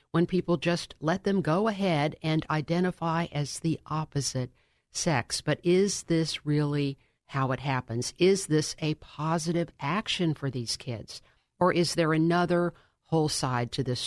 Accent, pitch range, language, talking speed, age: American, 140-170 Hz, English, 155 wpm, 50-69